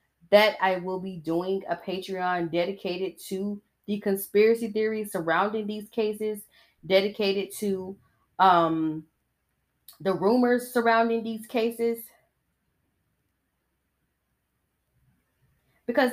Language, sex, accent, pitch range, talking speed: English, female, American, 170-230 Hz, 90 wpm